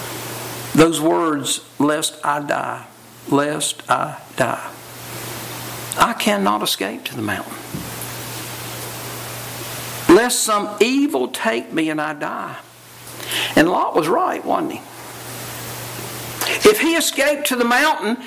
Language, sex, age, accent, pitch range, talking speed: English, male, 60-79, American, 225-320 Hz, 110 wpm